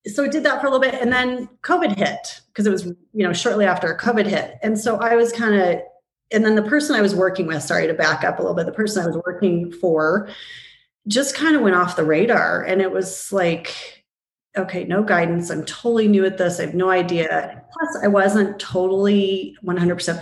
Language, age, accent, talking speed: English, 30-49, American, 225 wpm